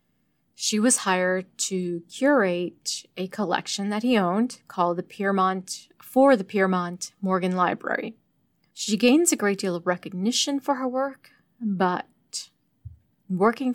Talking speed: 130 wpm